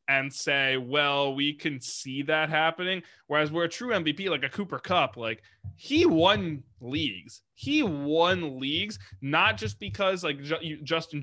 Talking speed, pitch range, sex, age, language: 160 wpm, 130-165 Hz, male, 20-39, English